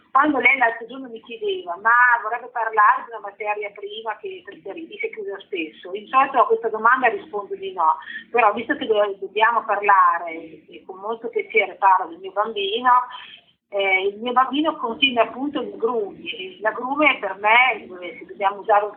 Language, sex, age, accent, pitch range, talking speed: Italian, female, 40-59, native, 205-280 Hz, 170 wpm